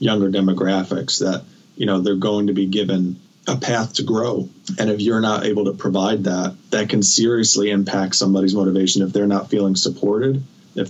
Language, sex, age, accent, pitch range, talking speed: English, male, 20-39, American, 95-110 Hz, 185 wpm